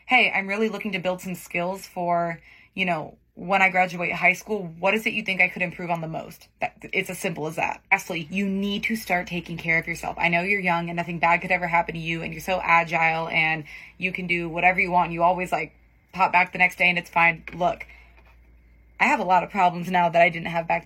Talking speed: 255 wpm